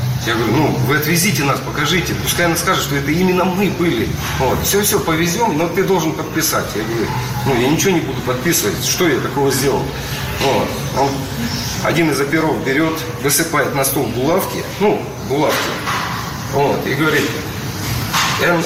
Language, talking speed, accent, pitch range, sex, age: Russian, 165 wpm, native, 135-170 Hz, male, 40-59